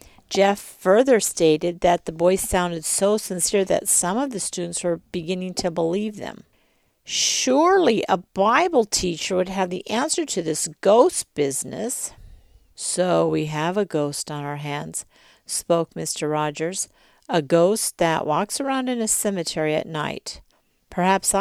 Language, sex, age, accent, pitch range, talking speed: English, female, 50-69, American, 160-210 Hz, 150 wpm